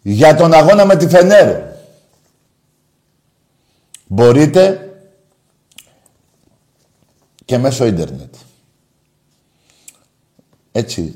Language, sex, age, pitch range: Greek, male, 60-79, 100-140 Hz